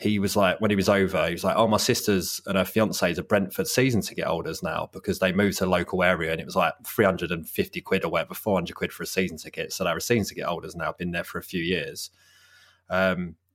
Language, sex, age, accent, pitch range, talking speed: English, male, 20-39, British, 95-125 Hz, 255 wpm